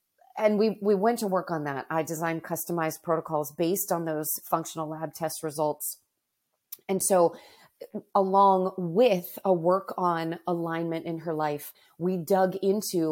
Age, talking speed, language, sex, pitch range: 30-49, 150 wpm, English, female, 160-185 Hz